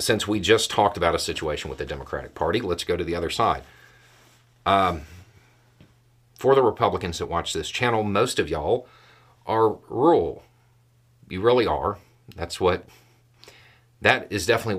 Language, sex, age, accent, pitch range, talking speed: English, male, 40-59, American, 110-120 Hz, 155 wpm